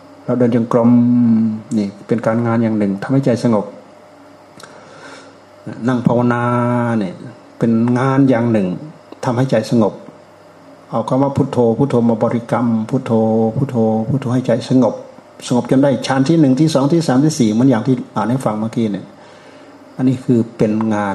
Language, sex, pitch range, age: Thai, male, 110-135 Hz, 60-79